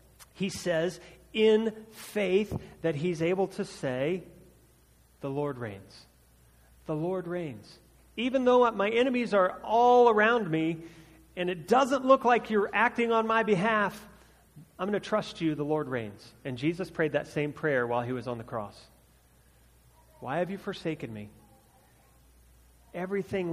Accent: American